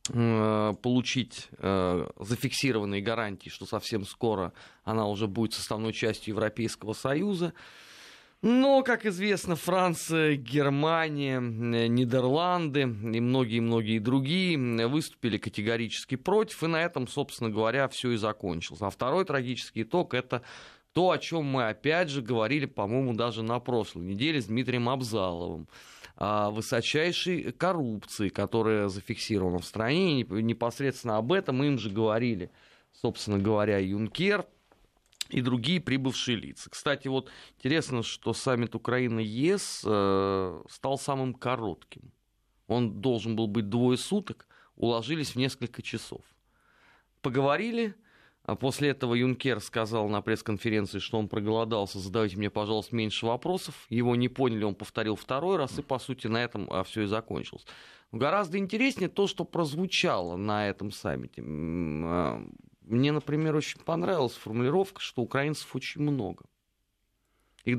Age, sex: 30-49, male